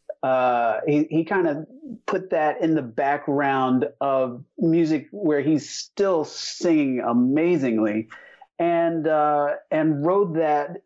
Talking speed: 115 wpm